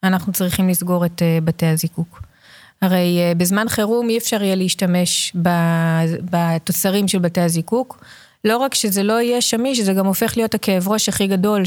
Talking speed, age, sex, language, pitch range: 160 wpm, 20-39, female, Hebrew, 180-215 Hz